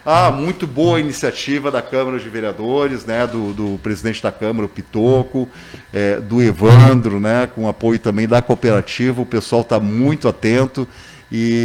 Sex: male